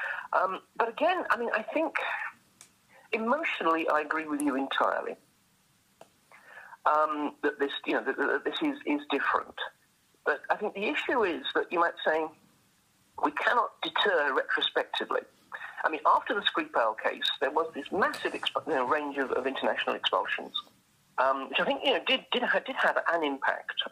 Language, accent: English, British